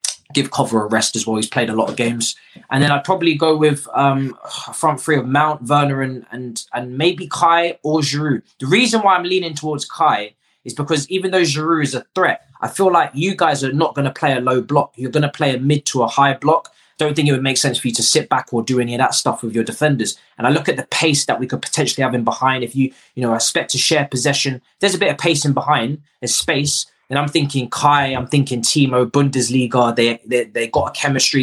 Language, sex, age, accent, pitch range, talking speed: English, male, 20-39, British, 125-150 Hz, 255 wpm